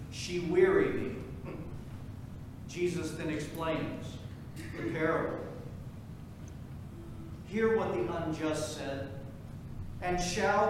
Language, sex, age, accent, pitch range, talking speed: English, male, 40-59, American, 160-220 Hz, 85 wpm